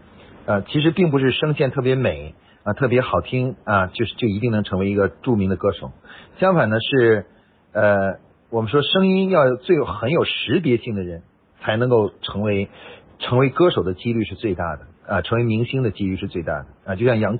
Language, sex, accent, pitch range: Chinese, male, native, 95-130 Hz